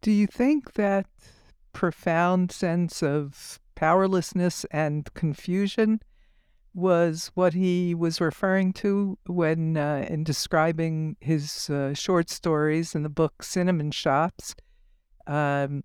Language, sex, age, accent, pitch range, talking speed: English, female, 60-79, American, 145-185 Hz, 115 wpm